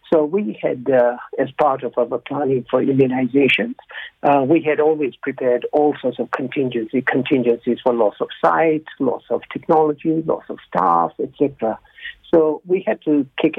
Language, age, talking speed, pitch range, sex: English, 60-79, 165 wpm, 130-160 Hz, male